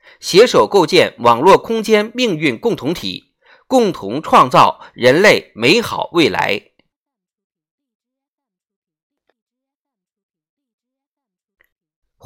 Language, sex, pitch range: Chinese, male, 185-260 Hz